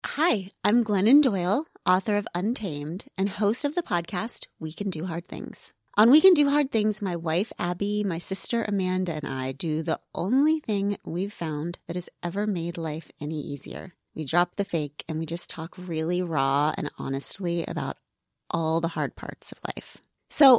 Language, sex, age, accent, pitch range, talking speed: English, female, 30-49, American, 170-230 Hz, 185 wpm